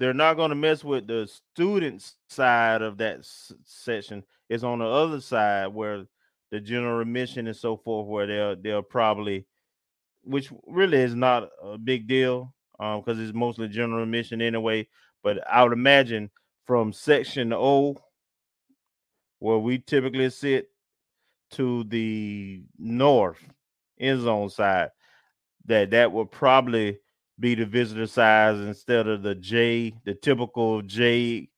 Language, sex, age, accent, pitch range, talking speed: English, male, 30-49, American, 105-125 Hz, 145 wpm